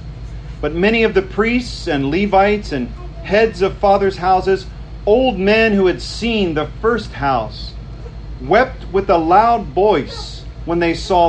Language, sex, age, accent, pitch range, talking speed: English, male, 40-59, American, 150-205 Hz, 150 wpm